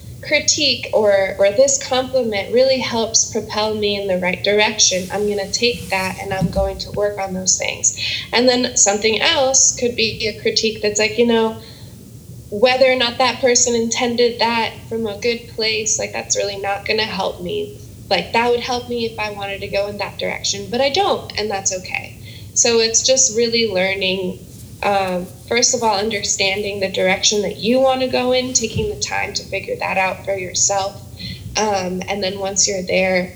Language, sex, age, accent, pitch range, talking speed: English, female, 10-29, American, 190-230 Hz, 190 wpm